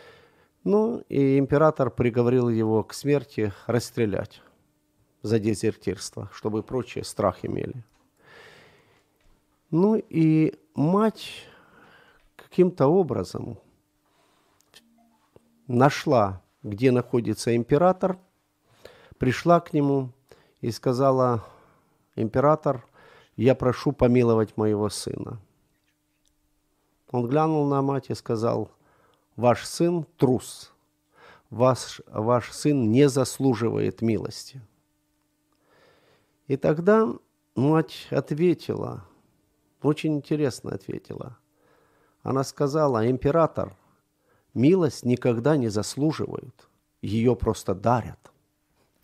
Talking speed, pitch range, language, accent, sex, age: 80 wpm, 115-150 Hz, Ukrainian, native, male, 50-69